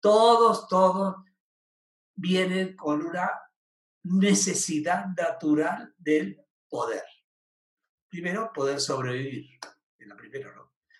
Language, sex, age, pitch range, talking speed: Spanish, male, 60-79, 145-180 Hz, 85 wpm